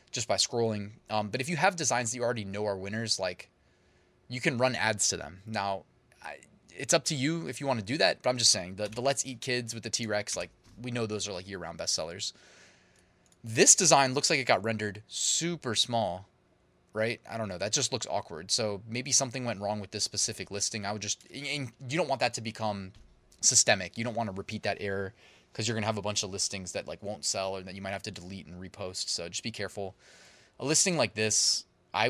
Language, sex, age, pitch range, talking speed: English, male, 20-39, 100-125 Hz, 240 wpm